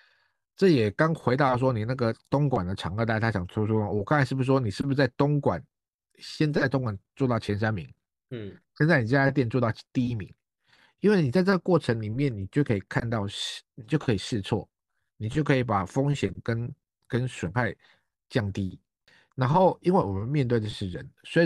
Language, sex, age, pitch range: Chinese, male, 50-69, 105-140 Hz